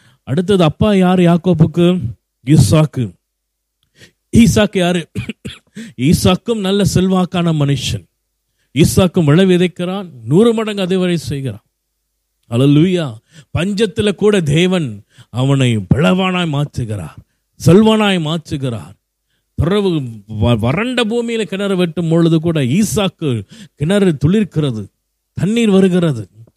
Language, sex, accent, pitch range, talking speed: Tamil, male, native, 130-200 Hz, 90 wpm